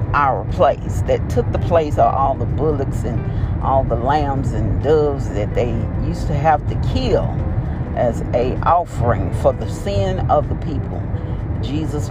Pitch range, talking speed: 100-125 Hz, 165 wpm